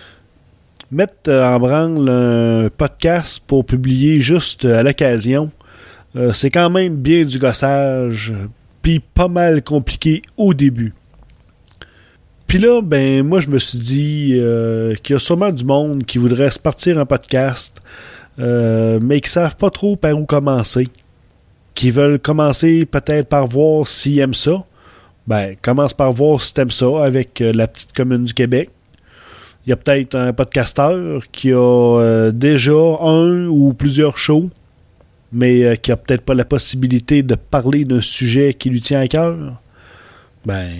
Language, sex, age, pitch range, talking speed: French, male, 30-49, 120-150 Hz, 160 wpm